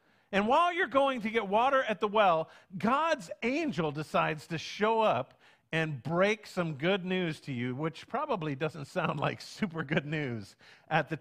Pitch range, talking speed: 150-220 Hz, 175 wpm